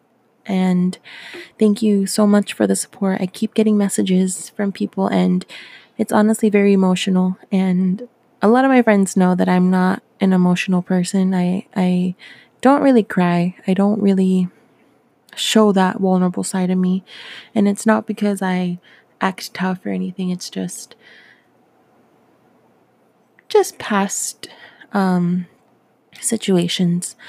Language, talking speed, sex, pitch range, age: English, 135 wpm, female, 180-205 Hz, 20-39